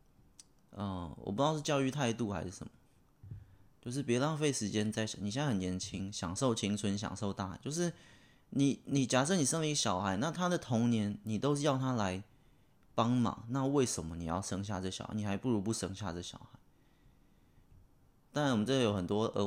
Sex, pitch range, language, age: male, 100-130 Hz, Chinese, 20-39